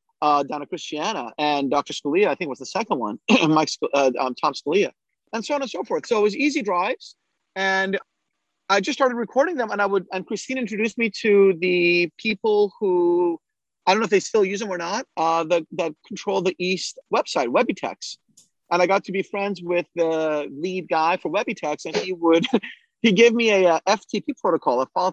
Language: English